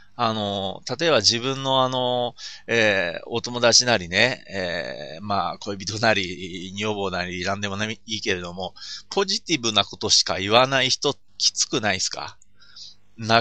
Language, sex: Japanese, male